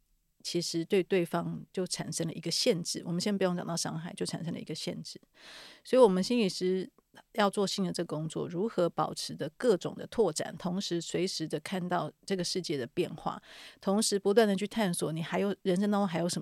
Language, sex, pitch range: Chinese, female, 175-215 Hz